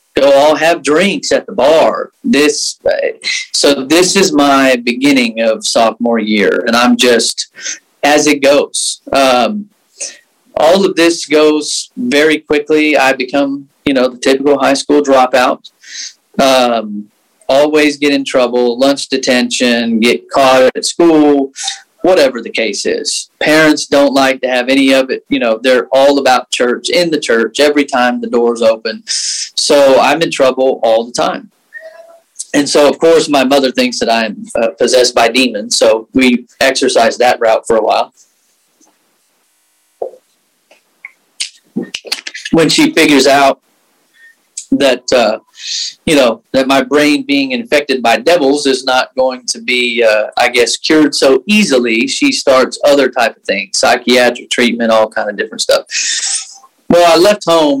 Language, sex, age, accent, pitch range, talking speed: English, male, 40-59, American, 125-165 Hz, 155 wpm